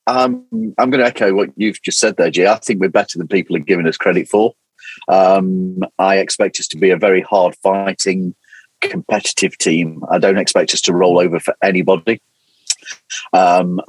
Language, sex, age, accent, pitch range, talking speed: English, male, 40-59, British, 85-95 Hz, 190 wpm